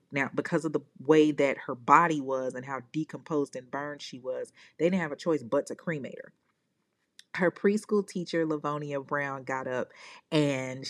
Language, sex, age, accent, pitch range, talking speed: English, female, 40-59, American, 145-190 Hz, 180 wpm